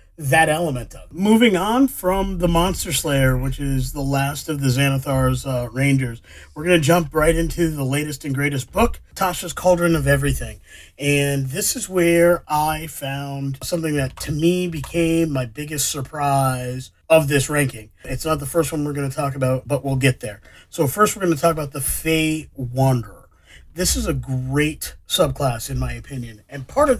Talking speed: 190 wpm